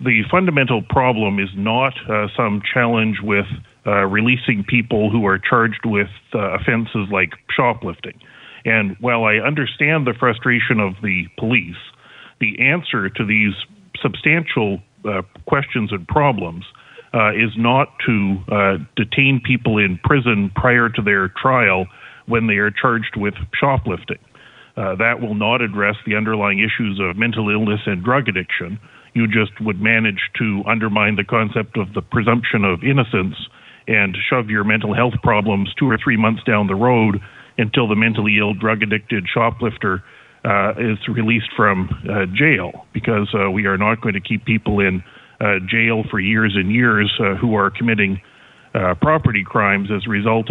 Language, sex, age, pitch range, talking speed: English, male, 40-59, 100-120 Hz, 160 wpm